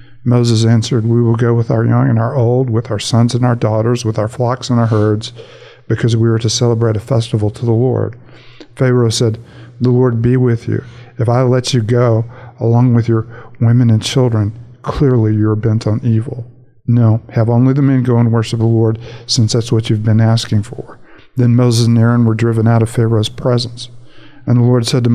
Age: 50-69